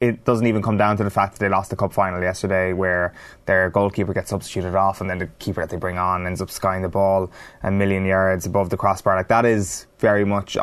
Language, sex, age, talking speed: English, male, 20-39, 255 wpm